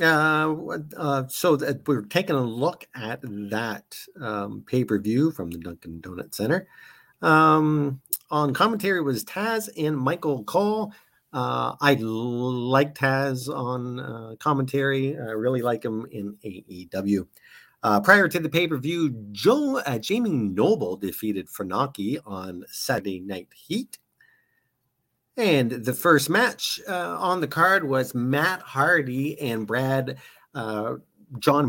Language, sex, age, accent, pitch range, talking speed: English, male, 50-69, American, 105-150 Hz, 130 wpm